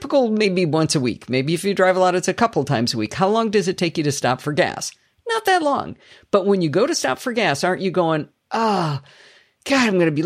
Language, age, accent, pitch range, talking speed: English, 50-69, American, 140-185 Hz, 280 wpm